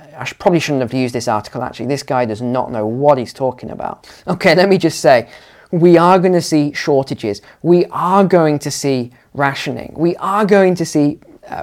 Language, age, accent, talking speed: English, 20-39, British, 205 wpm